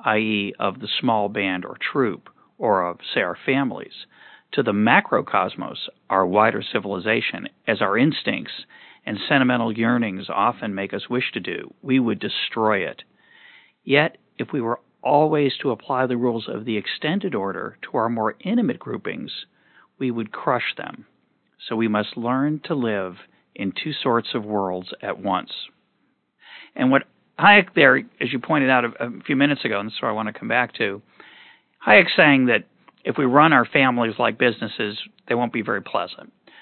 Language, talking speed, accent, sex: English, 170 wpm, American, male